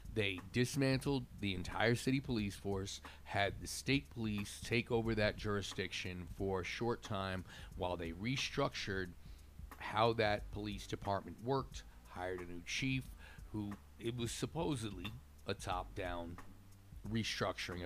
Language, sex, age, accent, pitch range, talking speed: English, male, 40-59, American, 90-120 Hz, 130 wpm